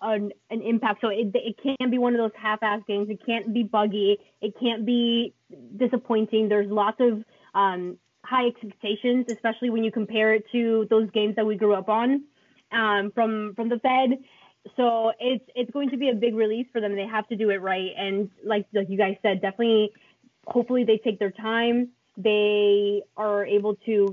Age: 20-39